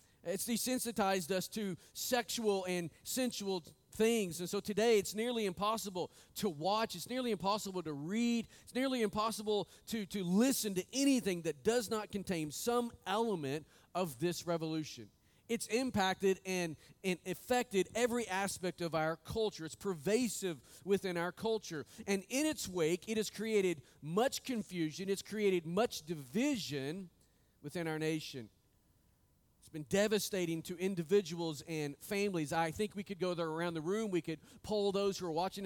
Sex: male